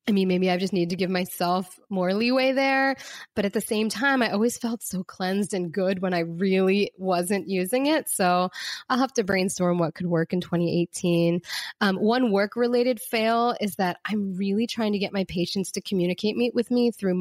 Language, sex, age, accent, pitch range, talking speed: English, female, 20-39, American, 180-220 Hz, 200 wpm